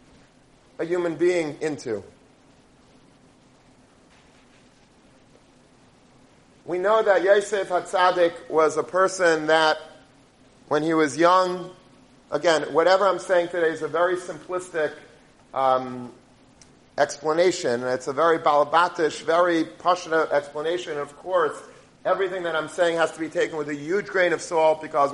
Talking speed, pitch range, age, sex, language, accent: 125 wpm, 155-185 Hz, 40-59, male, English, American